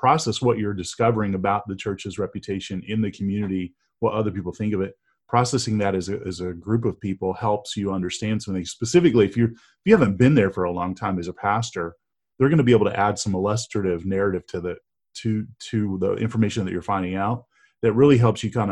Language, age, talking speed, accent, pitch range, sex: English, 30-49, 225 wpm, American, 100-115 Hz, male